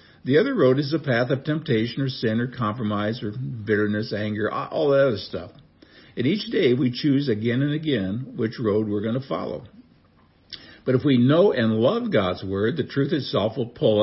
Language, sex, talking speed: English, male, 195 wpm